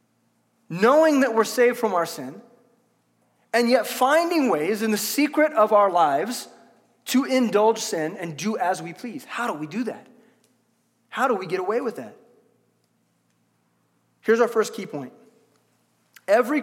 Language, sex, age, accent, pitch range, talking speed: English, male, 30-49, American, 170-245 Hz, 155 wpm